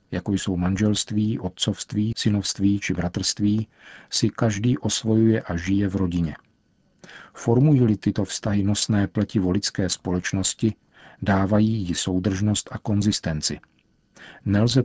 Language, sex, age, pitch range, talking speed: Czech, male, 50-69, 95-110 Hz, 110 wpm